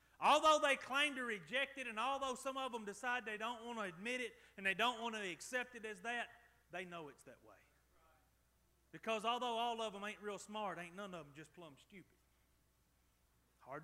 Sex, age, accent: male, 30-49, American